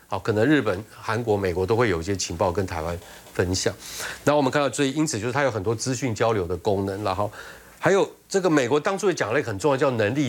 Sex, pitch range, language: male, 100-150 Hz, Chinese